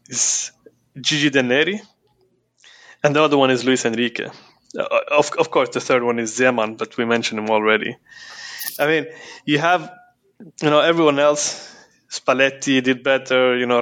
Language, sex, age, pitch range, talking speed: English, male, 20-39, 125-155 Hz, 155 wpm